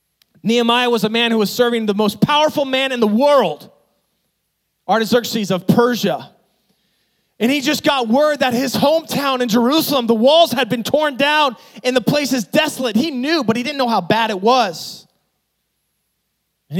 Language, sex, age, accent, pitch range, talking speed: English, male, 20-39, American, 190-245 Hz, 175 wpm